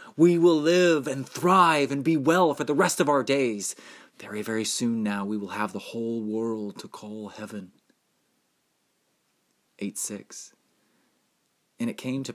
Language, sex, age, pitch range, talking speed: English, male, 30-49, 100-135 Hz, 155 wpm